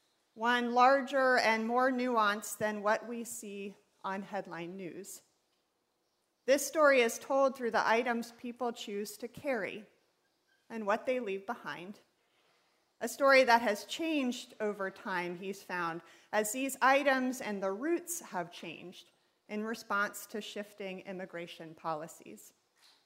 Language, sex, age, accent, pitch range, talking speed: English, female, 40-59, American, 190-250 Hz, 135 wpm